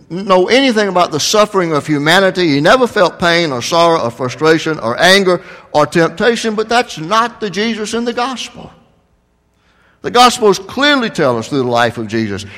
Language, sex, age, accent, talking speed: English, male, 60-79, American, 175 wpm